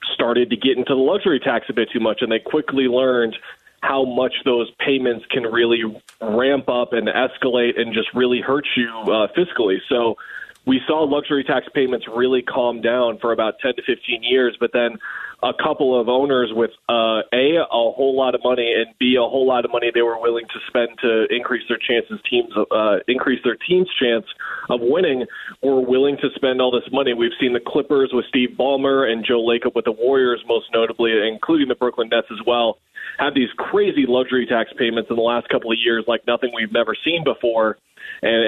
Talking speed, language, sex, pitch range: 205 wpm, English, male, 115-135 Hz